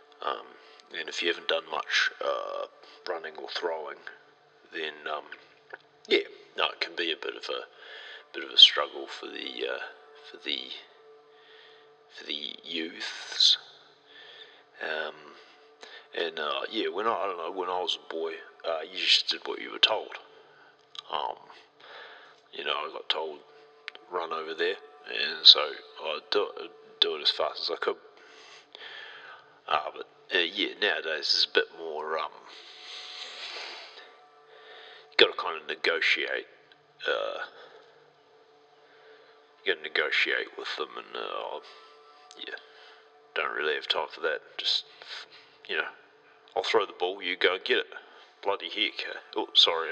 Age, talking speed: 30-49, 155 wpm